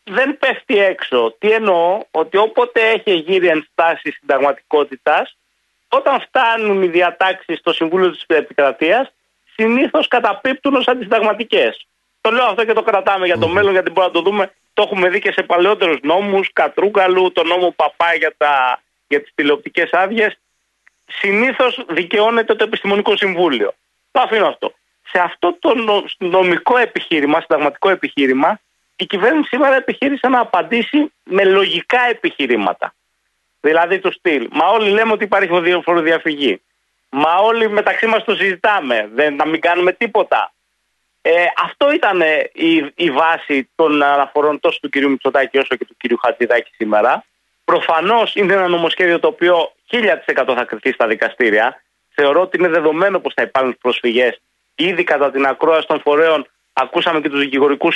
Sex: male